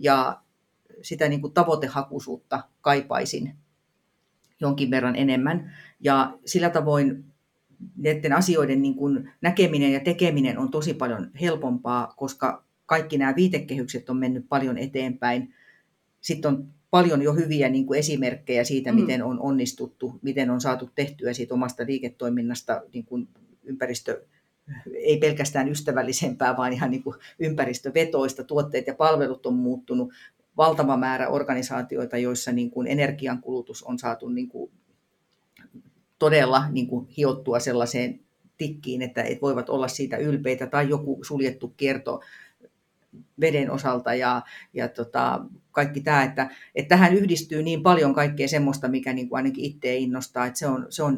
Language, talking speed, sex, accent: Finnish, 130 wpm, female, native